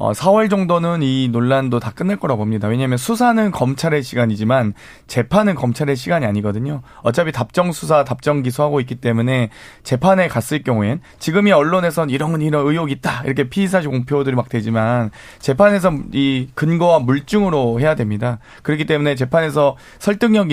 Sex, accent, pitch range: male, native, 125-165 Hz